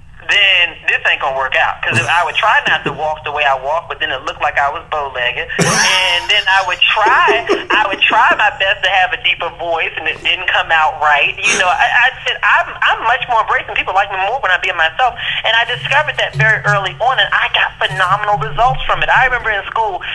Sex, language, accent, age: male, English, American, 30-49